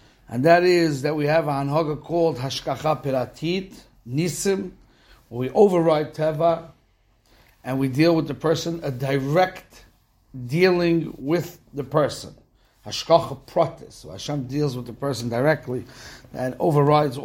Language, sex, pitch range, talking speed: English, male, 125-160 Hz, 135 wpm